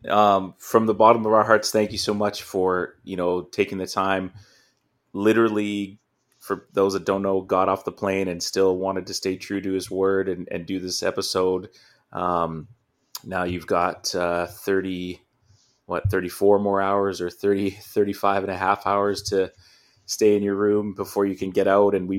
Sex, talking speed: male, 190 wpm